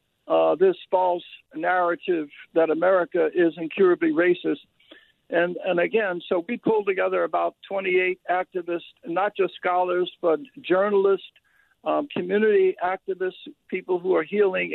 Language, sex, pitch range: English, male, 175-240 Hz